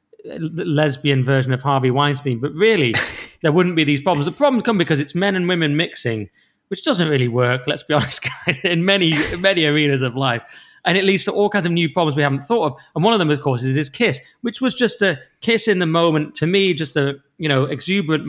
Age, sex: 20-39, male